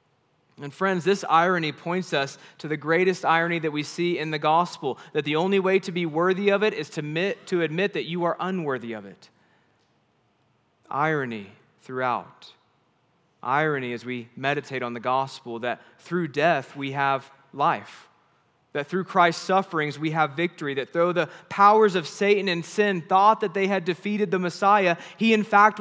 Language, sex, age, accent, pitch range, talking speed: English, male, 30-49, American, 145-200 Hz, 175 wpm